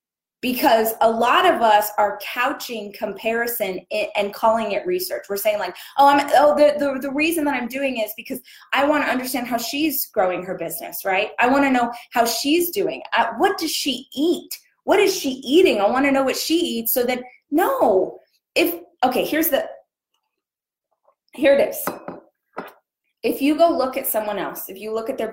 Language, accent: English, American